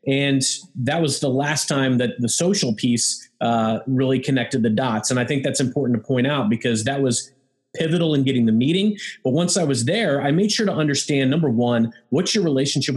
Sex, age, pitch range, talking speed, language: male, 30-49, 120-150 Hz, 215 wpm, English